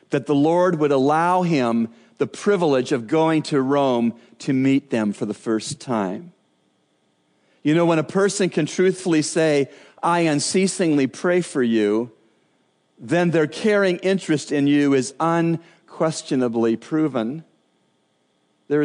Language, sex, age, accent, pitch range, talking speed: English, male, 40-59, American, 115-170 Hz, 135 wpm